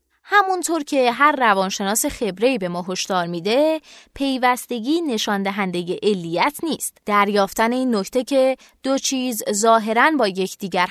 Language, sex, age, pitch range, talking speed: Persian, female, 20-39, 195-270 Hz, 125 wpm